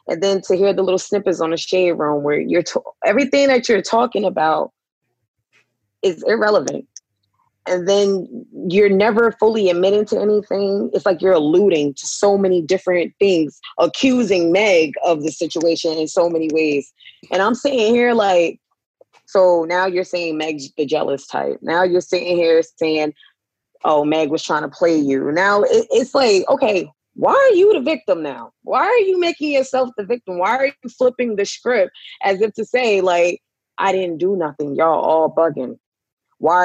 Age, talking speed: 20-39, 180 wpm